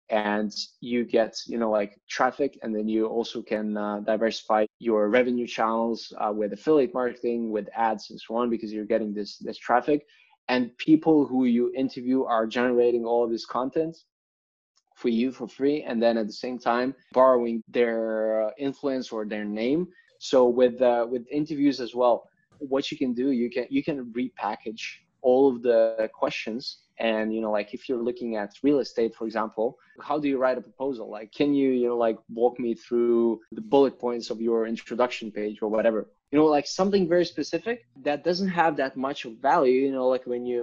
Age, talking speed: 20-39, 195 wpm